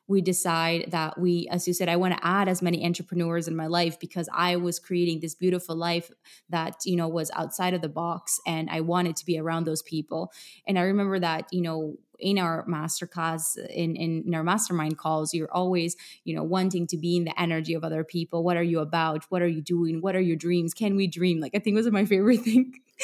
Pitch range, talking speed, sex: 165-195 Hz, 235 wpm, female